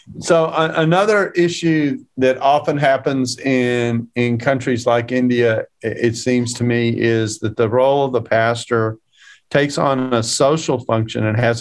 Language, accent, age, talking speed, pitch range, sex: English, American, 40-59, 155 wpm, 115-135 Hz, male